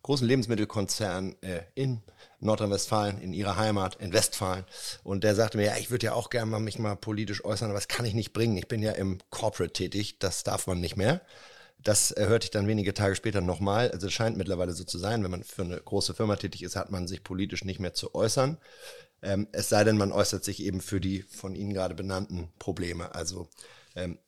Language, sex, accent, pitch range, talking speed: German, male, German, 95-115 Hz, 225 wpm